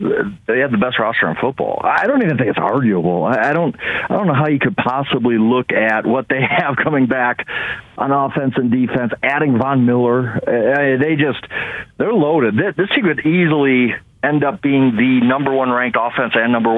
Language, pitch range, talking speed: English, 125-185 Hz, 190 wpm